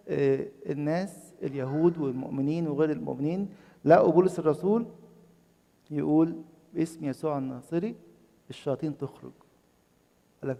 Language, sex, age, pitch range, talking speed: English, male, 50-69, 130-165 Hz, 85 wpm